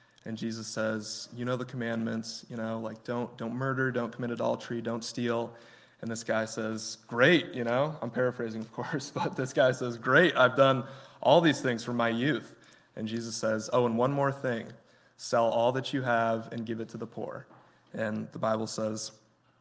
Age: 20-39